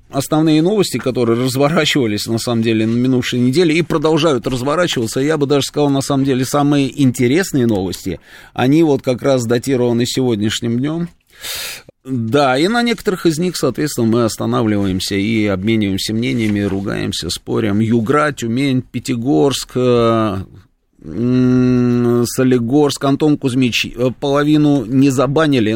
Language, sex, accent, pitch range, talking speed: Russian, male, native, 115-145 Hz, 125 wpm